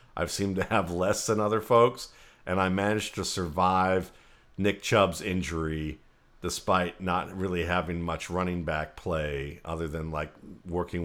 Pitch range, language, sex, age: 80-95 Hz, English, male, 50-69